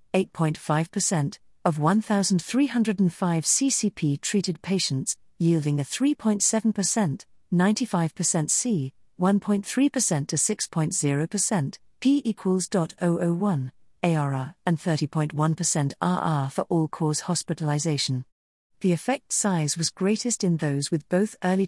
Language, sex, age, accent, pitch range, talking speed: English, female, 40-59, British, 155-210 Hz, 90 wpm